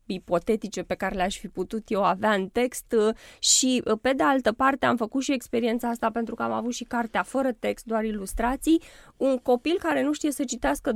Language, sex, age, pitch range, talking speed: Romanian, female, 20-39, 195-260 Hz, 205 wpm